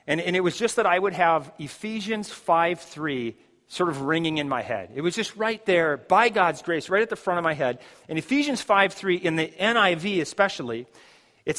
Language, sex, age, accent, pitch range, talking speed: English, male, 40-59, American, 160-200 Hz, 215 wpm